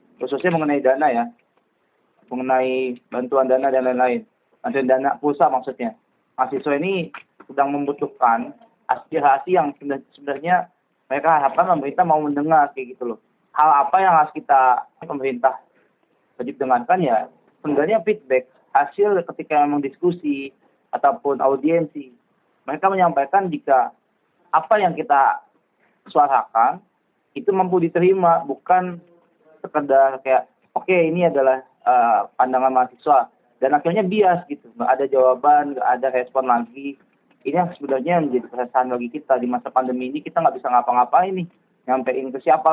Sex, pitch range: male, 130-170 Hz